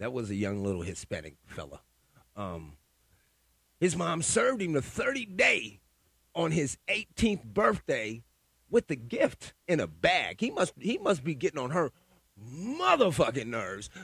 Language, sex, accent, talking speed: English, male, American, 145 wpm